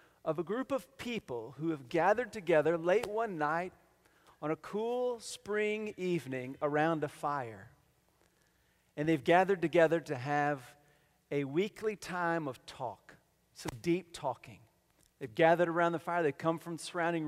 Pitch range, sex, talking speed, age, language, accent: 145-190 Hz, male, 155 wpm, 40-59, English, American